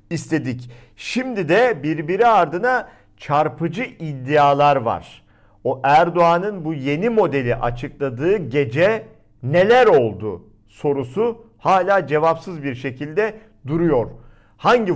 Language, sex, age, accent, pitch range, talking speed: Turkish, male, 50-69, native, 120-175 Hz, 95 wpm